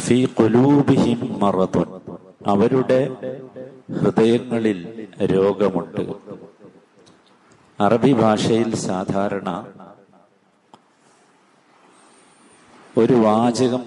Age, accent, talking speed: 50-69, native, 45 wpm